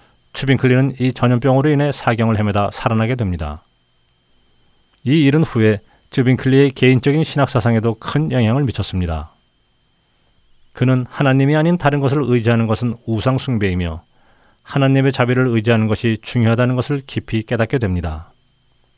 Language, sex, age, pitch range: Korean, male, 40-59, 100-135 Hz